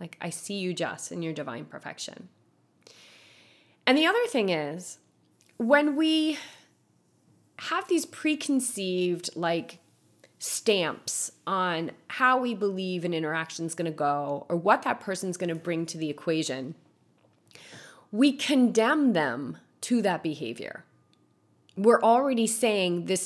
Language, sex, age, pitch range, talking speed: English, female, 30-49, 165-230 Hz, 135 wpm